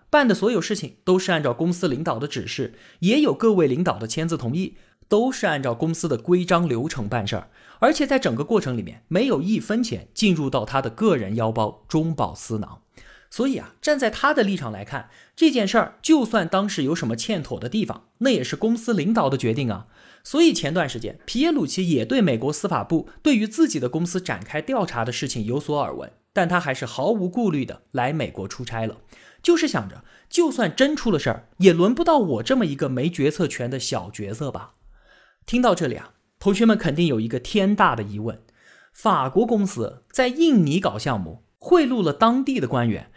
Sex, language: male, Chinese